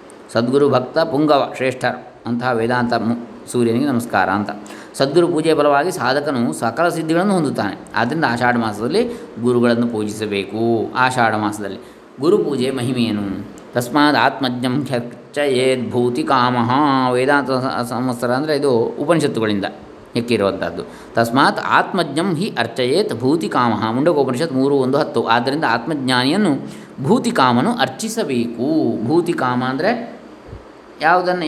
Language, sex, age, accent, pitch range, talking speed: Kannada, male, 20-39, native, 120-155 Hz, 100 wpm